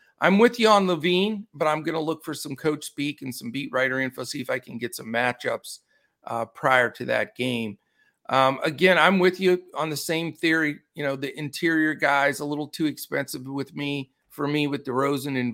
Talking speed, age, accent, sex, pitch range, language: 215 wpm, 40-59, American, male, 135-170 Hz, English